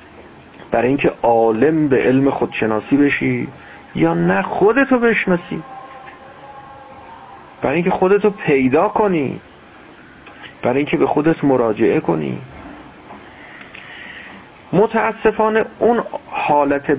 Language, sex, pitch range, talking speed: Persian, male, 120-165 Hz, 90 wpm